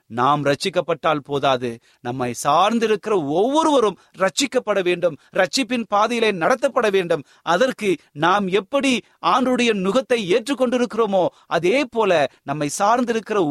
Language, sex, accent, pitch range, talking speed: Tamil, male, native, 125-190 Hz, 90 wpm